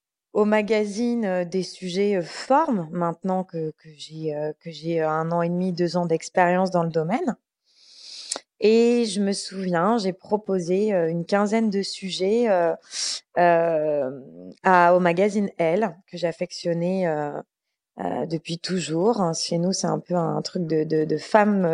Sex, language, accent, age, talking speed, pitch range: female, English, French, 20-39, 155 wpm, 165-200 Hz